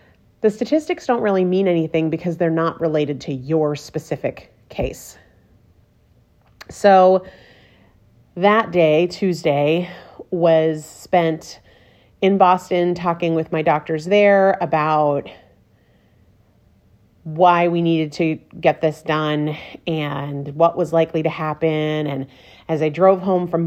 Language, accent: English, American